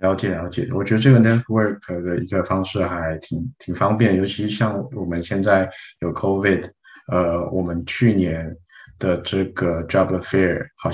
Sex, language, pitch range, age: male, Chinese, 90-110 Hz, 20-39